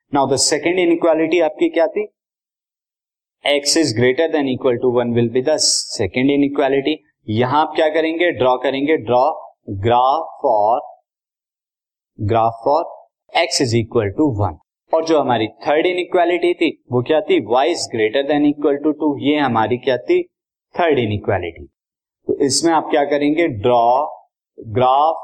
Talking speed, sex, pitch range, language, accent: 150 wpm, male, 120-160 Hz, Hindi, native